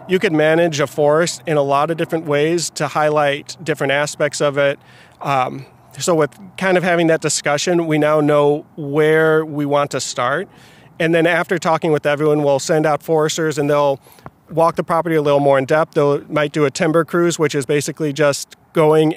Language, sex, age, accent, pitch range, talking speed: English, male, 30-49, American, 145-160 Hz, 200 wpm